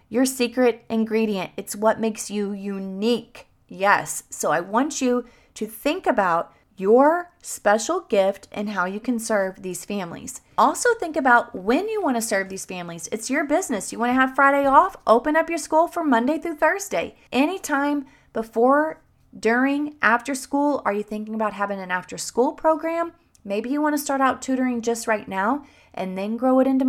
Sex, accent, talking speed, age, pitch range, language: female, American, 175 wpm, 30-49, 195-265 Hz, English